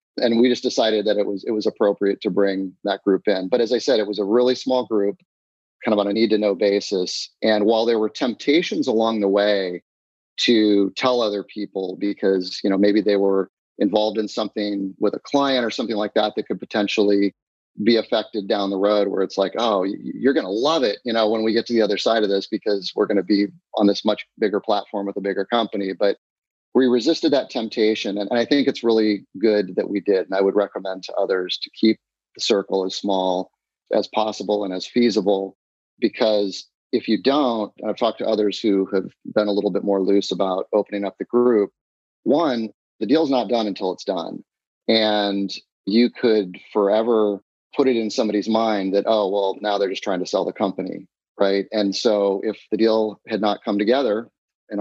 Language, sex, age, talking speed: English, male, 30-49, 210 wpm